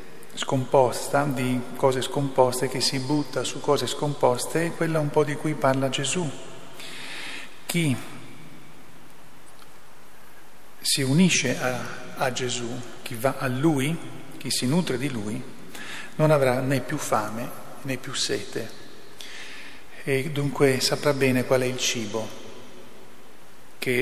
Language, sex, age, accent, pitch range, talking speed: Italian, male, 40-59, native, 125-145 Hz, 125 wpm